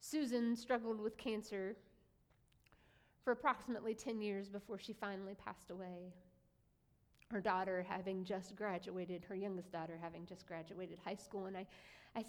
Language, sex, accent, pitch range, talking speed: English, female, American, 190-240 Hz, 140 wpm